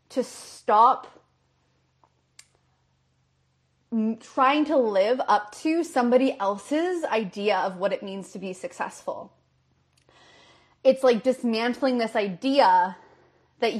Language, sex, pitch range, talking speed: English, female, 200-260 Hz, 100 wpm